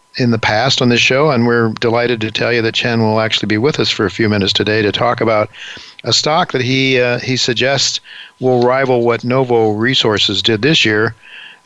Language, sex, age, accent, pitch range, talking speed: English, male, 50-69, American, 105-125 Hz, 220 wpm